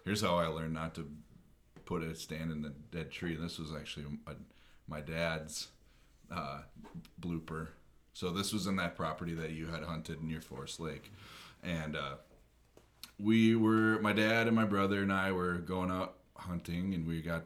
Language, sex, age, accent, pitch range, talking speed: English, male, 30-49, American, 75-90 Hz, 175 wpm